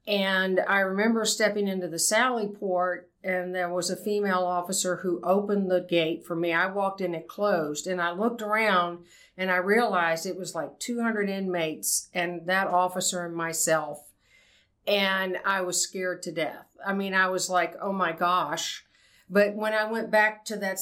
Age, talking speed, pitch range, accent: 50-69, 180 wpm, 175-205 Hz, American